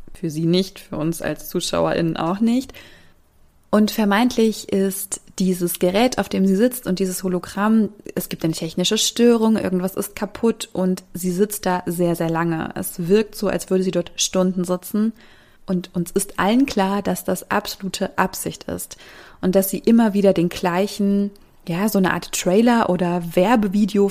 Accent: German